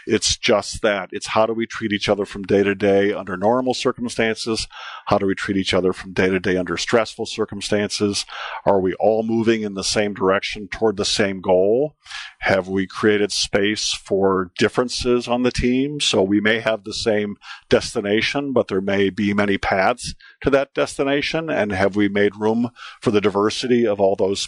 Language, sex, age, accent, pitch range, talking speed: English, male, 50-69, American, 95-115 Hz, 190 wpm